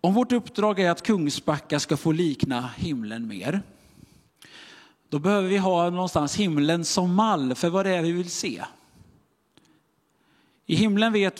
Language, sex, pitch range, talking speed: Swedish, male, 150-195 Hz, 155 wpm